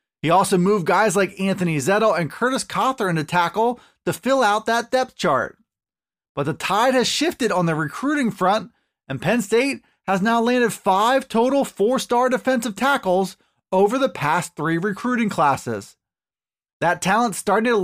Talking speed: 160 wpm